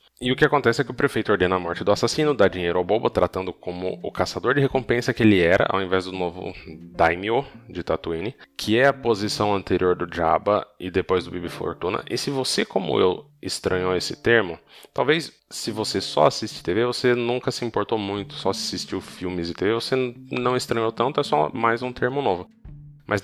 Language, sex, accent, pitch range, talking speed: Portuguese, male, Brazilian, 95-125 Hz, 205 wpm